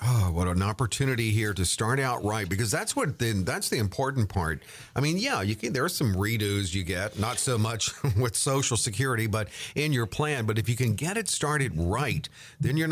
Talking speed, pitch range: 225 wpm, 105-135 Hz